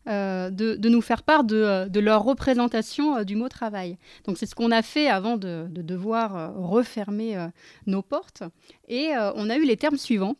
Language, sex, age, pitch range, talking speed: French, female, 20-39, 200-250 Hz, 225 wpm